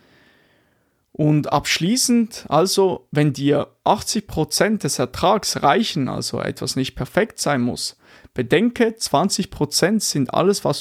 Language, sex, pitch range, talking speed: German, male, 140-190 Hz, 110 wpm